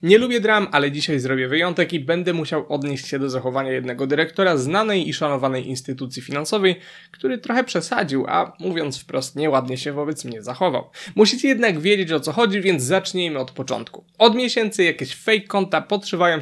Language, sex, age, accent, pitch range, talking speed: Polish, male, 20-39, native, 150-210 Hz, 175 wpm